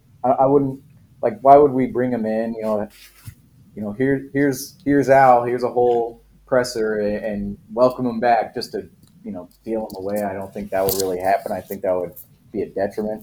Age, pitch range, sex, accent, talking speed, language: 30-49, 110-130 Hz, male, American, 210 wpm, English